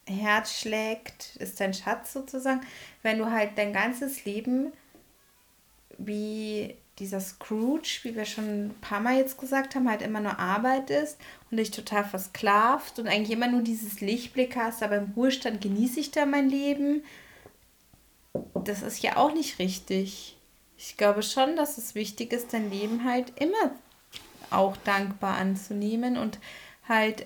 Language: German